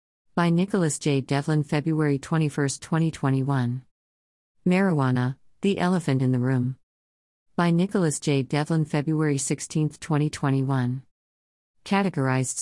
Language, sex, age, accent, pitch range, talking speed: English, female, 50-69, American, 125-155 Hz, 100 wpm